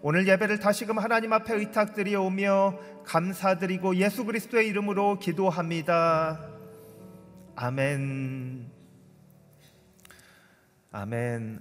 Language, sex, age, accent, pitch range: Korean, male, 40-59, native, 120-175 Hz